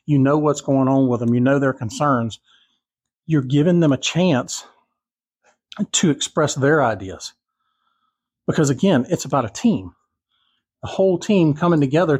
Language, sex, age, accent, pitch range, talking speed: English, male, 40-59, American, 130-170 Hz, 150 wpm